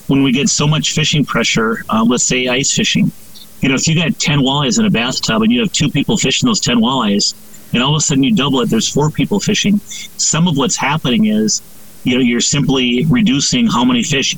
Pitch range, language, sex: 150-225 Hz, English, male